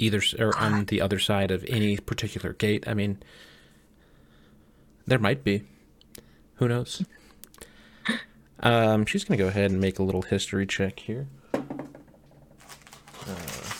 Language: English